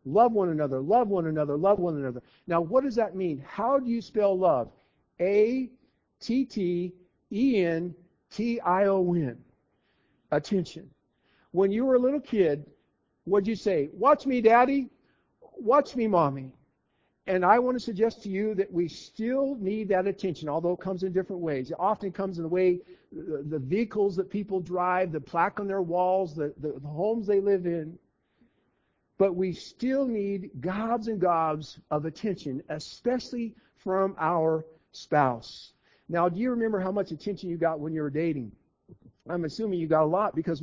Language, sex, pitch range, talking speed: English, male, 160-215 Hz, 165 wpm